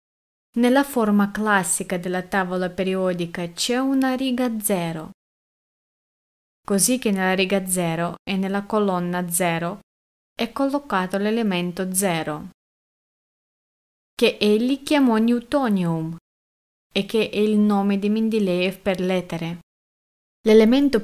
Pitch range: 185-230 Hz